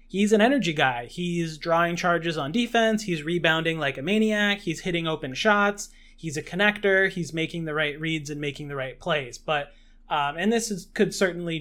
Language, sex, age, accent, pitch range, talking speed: English, male, 20-39, American, 150-180 Hz, 195 wpm